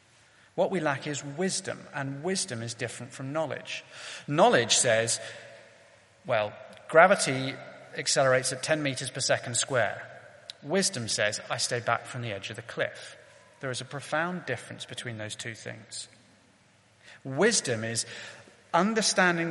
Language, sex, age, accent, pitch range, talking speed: English, male, 30-49, British, 125-165 Hz, 140 wpm